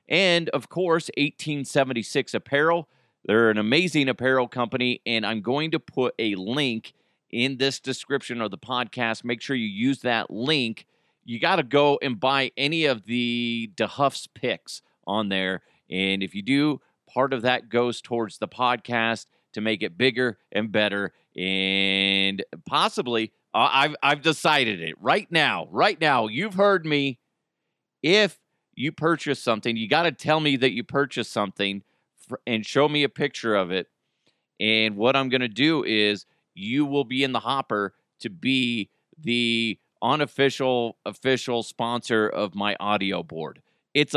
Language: English